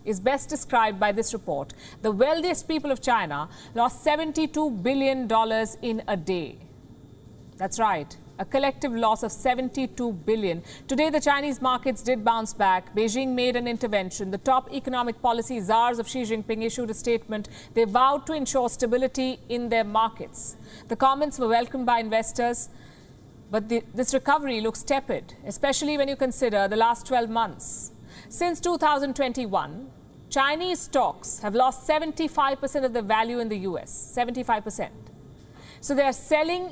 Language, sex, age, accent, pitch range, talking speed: English, female, 50-69, Indian, 225-270 Hz, 155 wpm